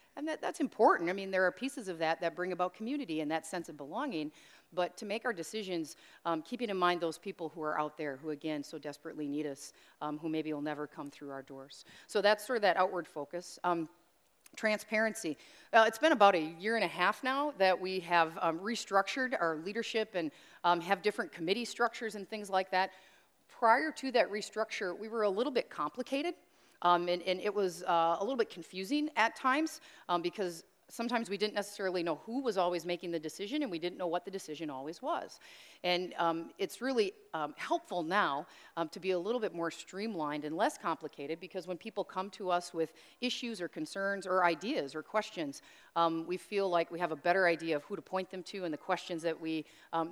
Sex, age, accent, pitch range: female, 40-59, American, 165-215 Hz